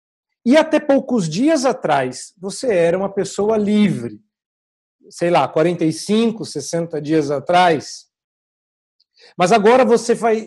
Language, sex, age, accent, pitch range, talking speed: Portuguese, male, 50-69, Brazilian, 165-240 Hz, 115 wpm